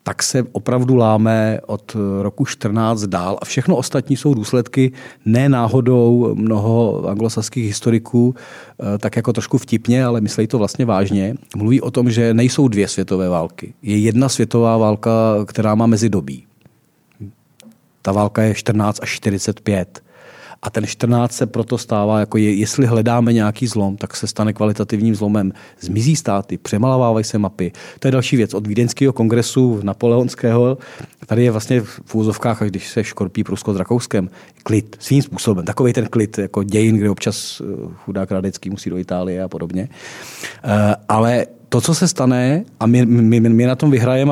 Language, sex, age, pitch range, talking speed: Czech, male, 40-59, 105-125 Hz, 160 wpm